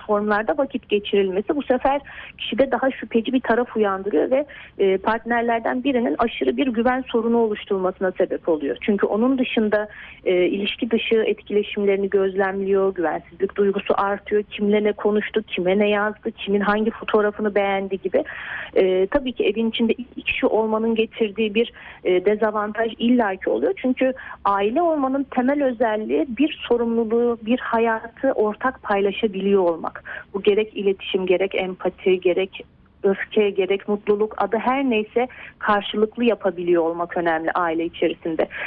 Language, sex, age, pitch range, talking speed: Turkish, female, 40-59, 200-245 Hz, 130 wpm